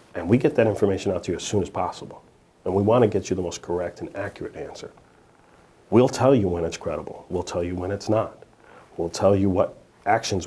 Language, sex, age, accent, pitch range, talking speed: English, male, 40-59, American, 85-105 Hz, 235 wpm